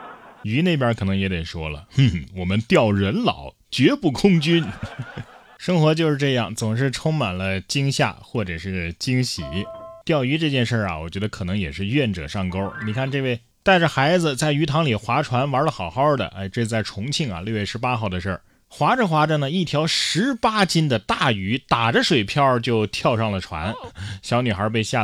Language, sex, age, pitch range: Chinese, male, 20-39, 100-140 Hz